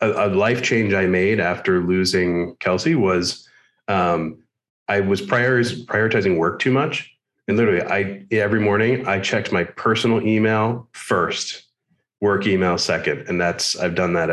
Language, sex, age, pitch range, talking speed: English, male, 30-49, 85-110 Hz, 145 wpm